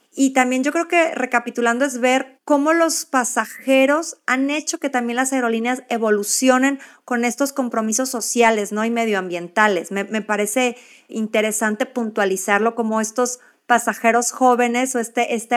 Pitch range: 215-255 Hz